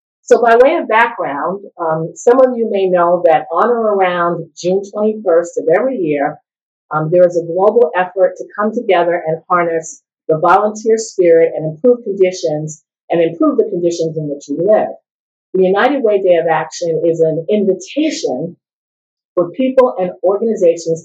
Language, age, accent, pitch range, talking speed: English, 50-69, American, 160-200 Hz, 165 wpm